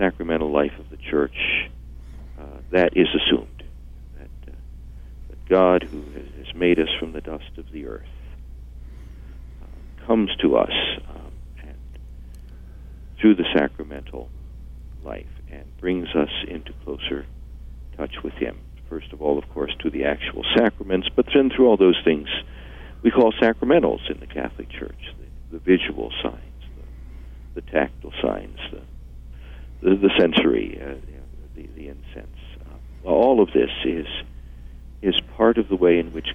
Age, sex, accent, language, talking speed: 60-79, male, American, English, 145 wpm